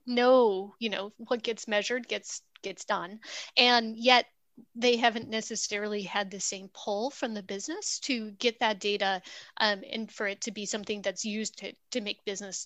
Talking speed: 180 wpm